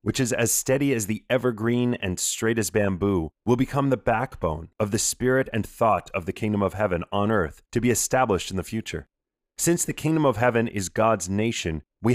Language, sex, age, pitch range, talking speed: English, male, 30-49, 100-130 Hz, 205 wpm